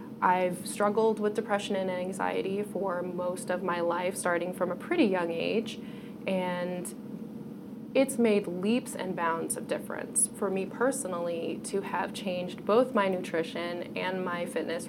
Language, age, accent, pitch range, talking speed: English, 20-39, American, 175-230 Hz, 150 wpm